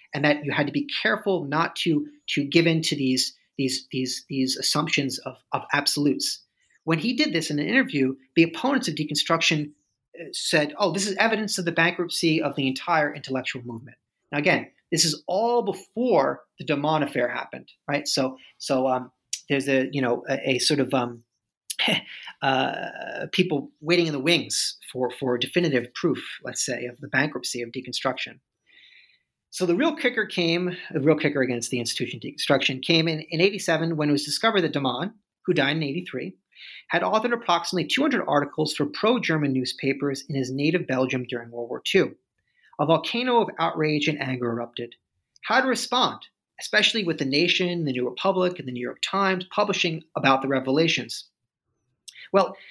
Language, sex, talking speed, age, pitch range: English, male, 175 wpm, 30-49, 130-180 Hz